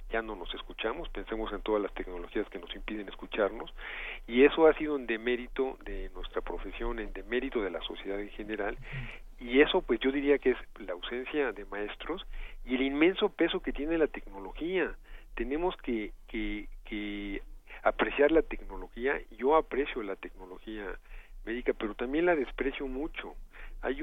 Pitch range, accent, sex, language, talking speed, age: 105-130 Hz, Mexican, male, Spanish, 165 wpm, 50-69